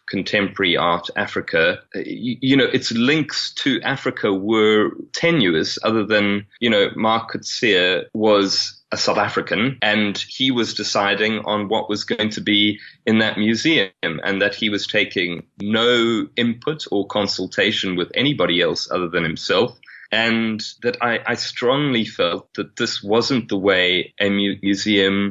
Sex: male